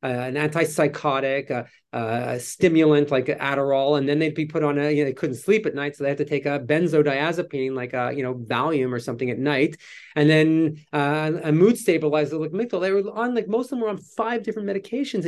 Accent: American